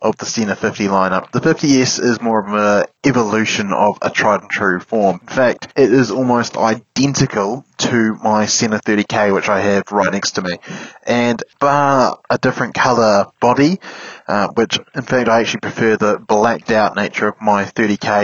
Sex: male